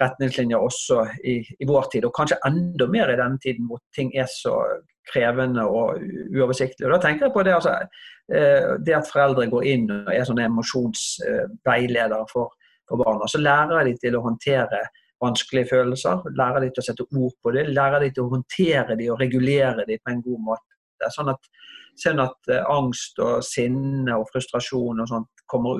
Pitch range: 125-165 Hz